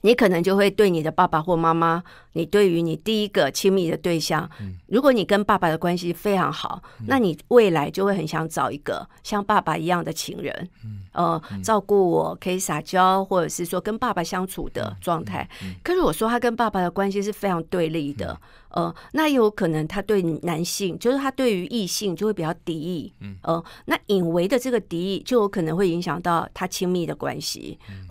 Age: 50-69